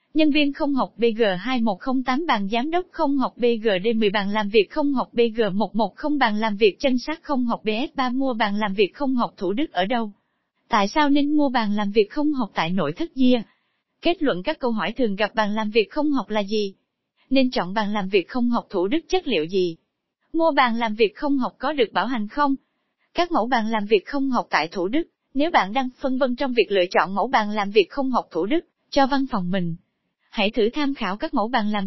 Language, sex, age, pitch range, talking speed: Vietnamese, female, 20-39, 215-285 Hz, 235 wpm